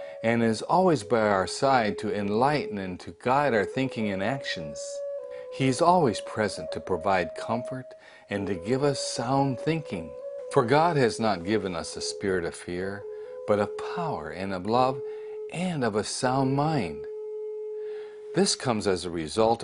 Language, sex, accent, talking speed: English, male, American, 165 wpm